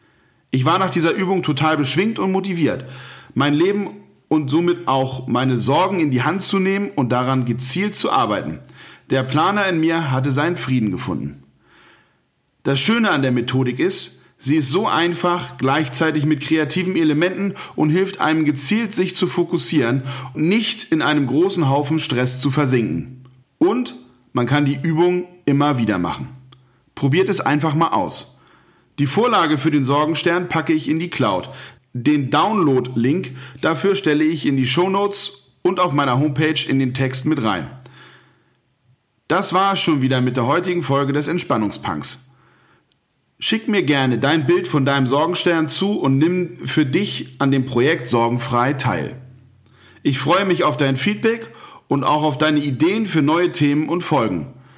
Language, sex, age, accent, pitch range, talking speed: German, male, 40-59, German, 130-175 Hz, 165 wpm